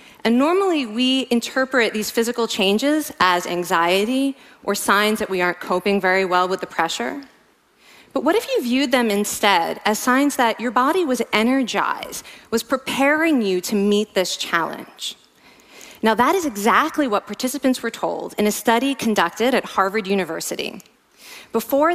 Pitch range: 195-255 Hz